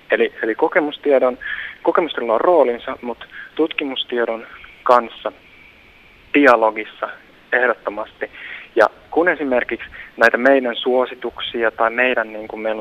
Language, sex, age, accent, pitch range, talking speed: Finnish, male, 30-49, native, 110-135 Hz, 105 wpm